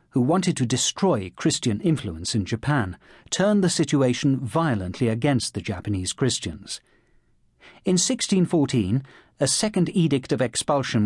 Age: 40-59